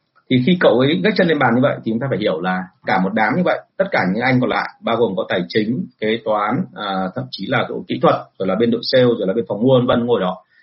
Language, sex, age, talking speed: Vietnamese, male, 30-49, 300 wpm